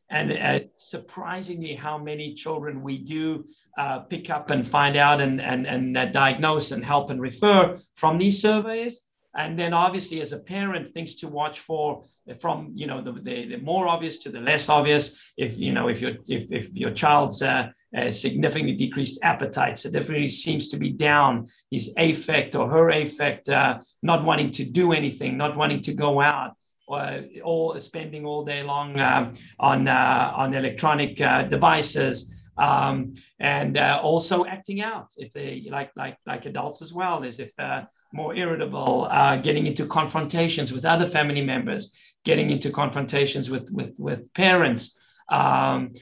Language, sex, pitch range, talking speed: English, male, 140-170 Hz, 175 wpm